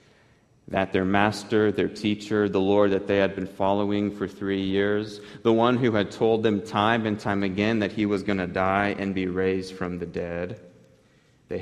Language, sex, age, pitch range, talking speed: English, male, 30-49, 90-105 Hz, 195 wpm